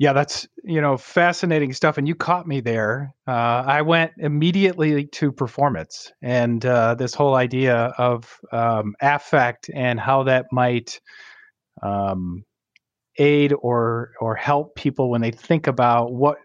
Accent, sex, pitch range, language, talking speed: American, male, 120-145 Hz, English, 145 wpm